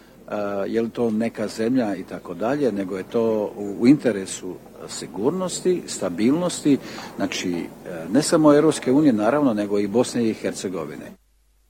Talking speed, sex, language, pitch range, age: 130 wpm, male, Croatian, 105-130 Hz, 60-79